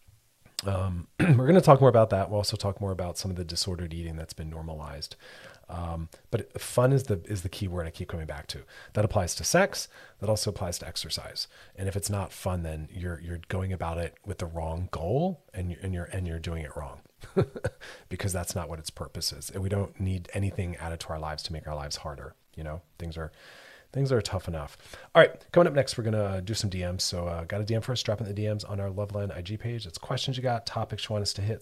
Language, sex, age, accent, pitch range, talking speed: English, male, 30-49, American, 85-110 Hz, 255 wpm